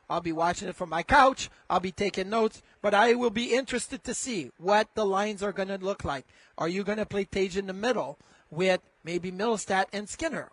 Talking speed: 230 wpm